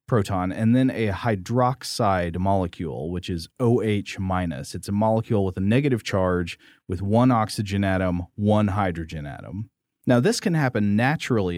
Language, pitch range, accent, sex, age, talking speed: English, 90-110 Hz, American, male, 30-49, 150 wpm